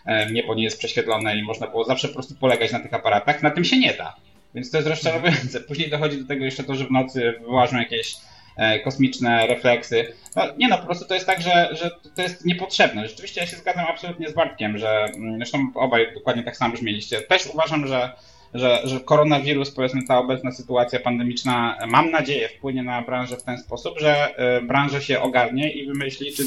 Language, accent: Polish, native